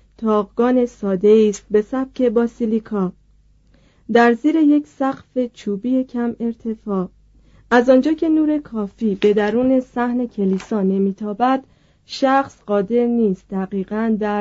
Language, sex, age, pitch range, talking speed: Persian, female, 40-59, 195-240 Hz, 120 wpm